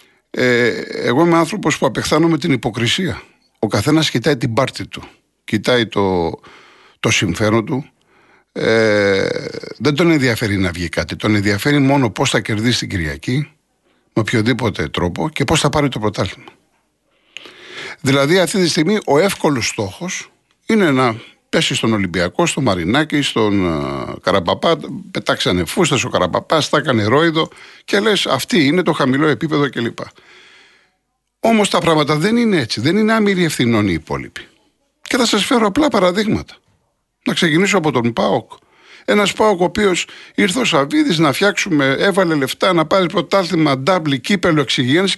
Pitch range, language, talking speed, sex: 115-185 Hz, Greek, 150 wpm, male